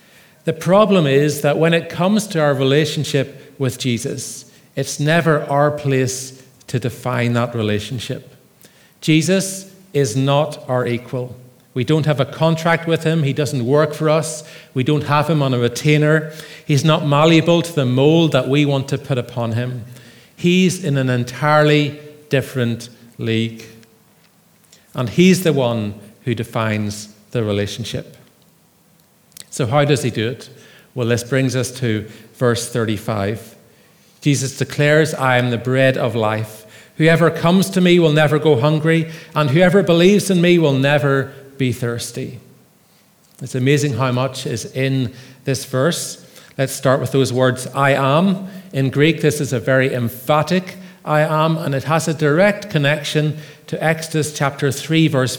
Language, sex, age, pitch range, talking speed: English, male, 40-59, 125-155 Hz, 155 wpm